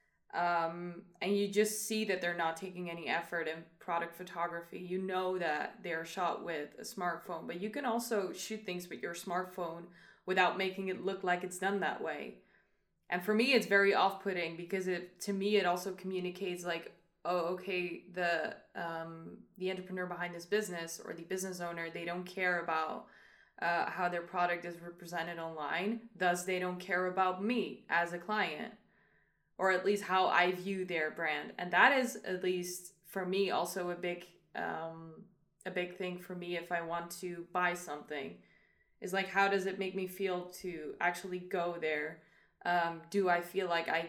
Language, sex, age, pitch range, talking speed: English, female, 20-39, 170-190 Hz, 185 wpm